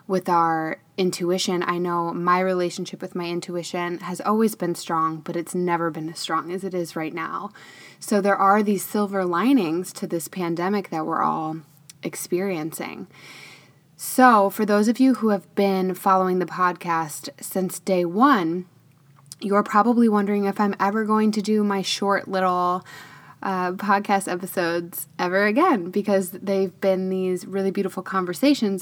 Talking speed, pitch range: 160 wpm, 170-200 Hz